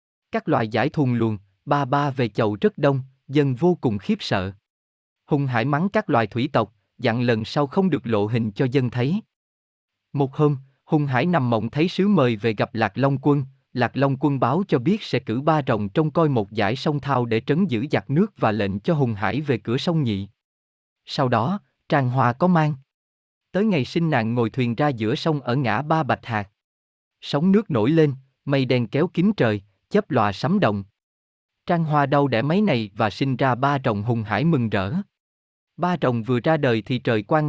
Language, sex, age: Vietnamese, male, 20-39